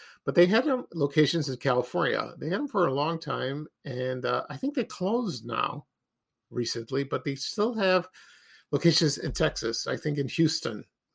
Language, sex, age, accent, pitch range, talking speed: English, male, 50-69, American, 130-175 Hz, 170 wpm